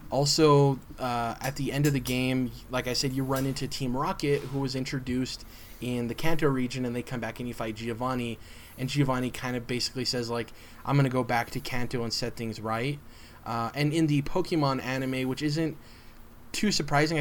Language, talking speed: English, 205 wpm